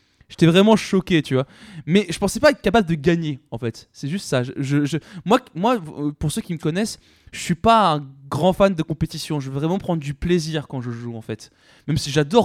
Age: 20-39